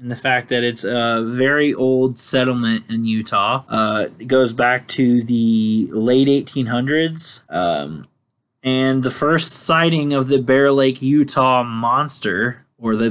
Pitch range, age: 120-145 Hz, 20-39